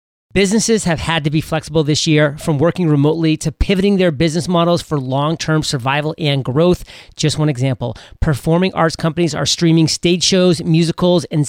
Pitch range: 150-175 Hz